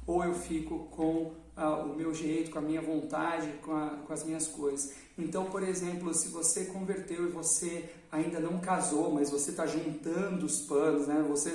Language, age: Portuguese, 40-59